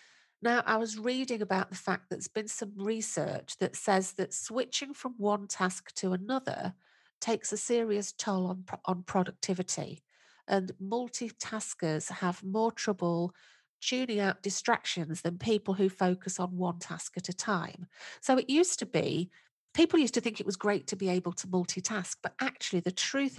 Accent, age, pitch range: British, 40-59, 180-215 Hz